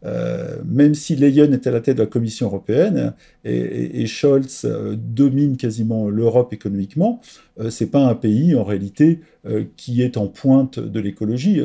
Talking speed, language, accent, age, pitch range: 185 wpm, French, French, 40-59, 115-150 Hz